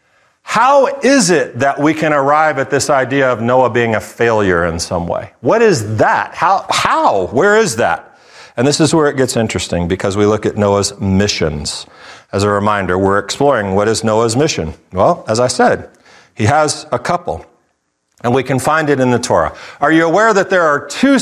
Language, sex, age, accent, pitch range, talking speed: English, male, 40-59, American, 115-155 Hz, 200 wpm